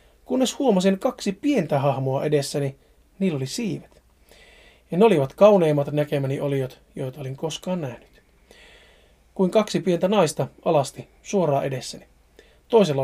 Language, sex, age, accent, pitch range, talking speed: Finnish, male, 30-49, native, 145-200 Hz, 125 wpm